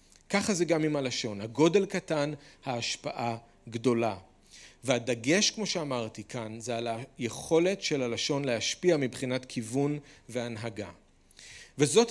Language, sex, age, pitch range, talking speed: Hebrew, male, 40-59, 130-185 Hz, 115 wpm